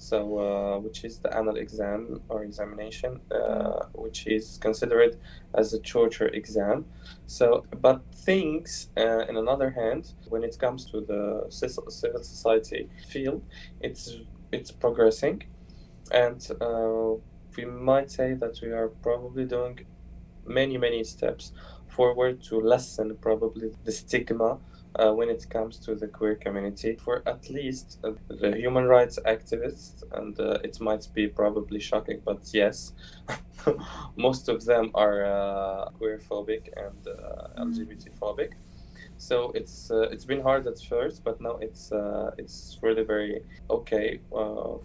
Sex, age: male, 20-39